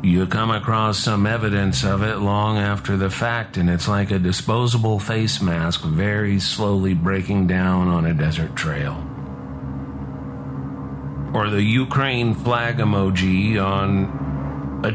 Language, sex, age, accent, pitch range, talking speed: English, male, 50-69, American, 80-115 Hz, 135 wpm